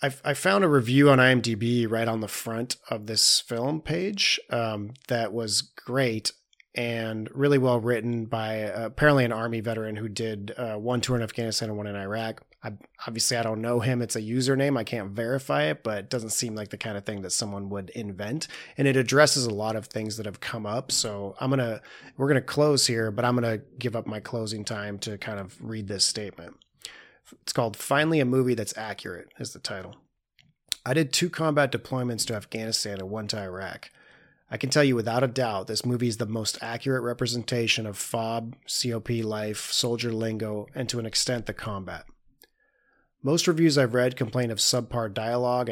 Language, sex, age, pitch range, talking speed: English, male, 30-49, 110-130 Hz, 200 wpm